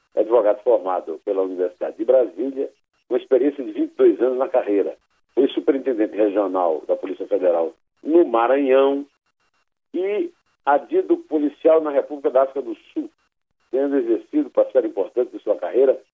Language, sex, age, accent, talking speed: Portuguese, male, 60-79, Brazilian, 140 wpm